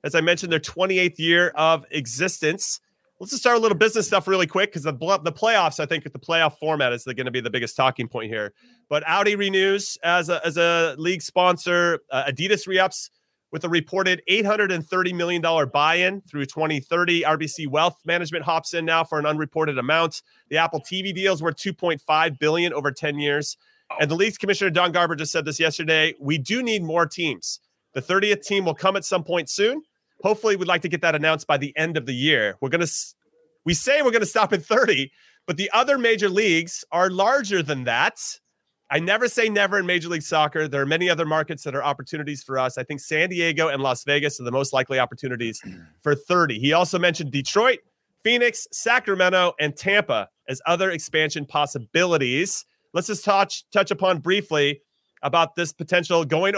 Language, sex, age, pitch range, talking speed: English, male, 30-49, 150-190 Hz, 200 wpm